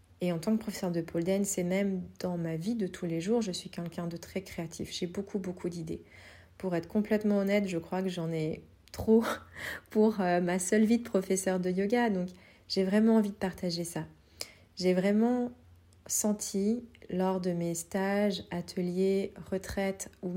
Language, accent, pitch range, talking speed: French, French, 170-195 Hz, 185 wpm